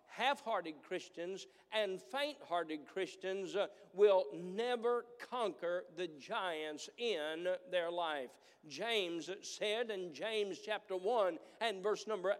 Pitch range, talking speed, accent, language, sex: 185-245 Hz, 105 wpm, American, English, male